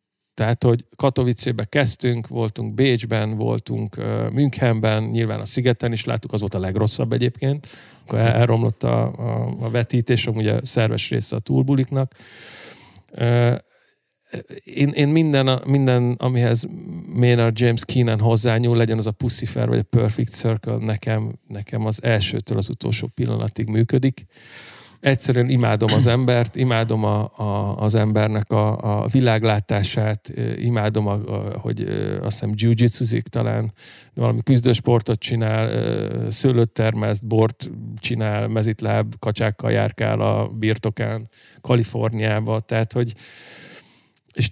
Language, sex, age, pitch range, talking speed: Hungarian, male, 50-69, 110-125 Hz, 125 wpm